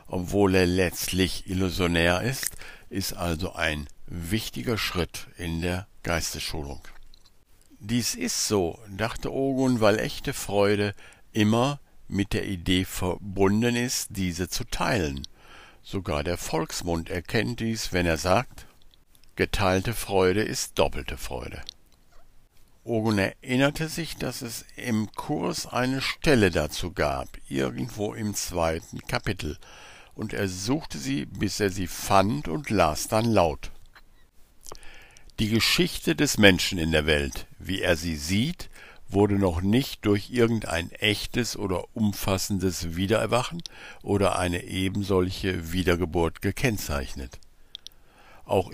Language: German